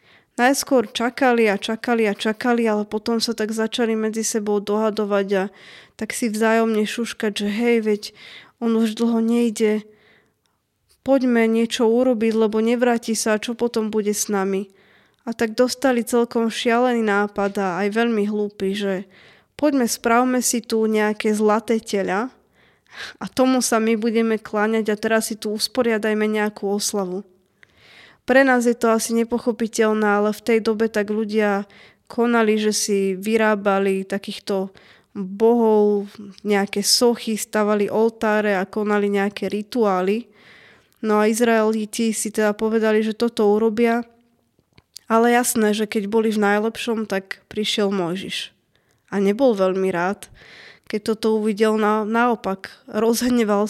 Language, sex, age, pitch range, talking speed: Slovak, female, 20-39, 205-230 Hz, 135 wpm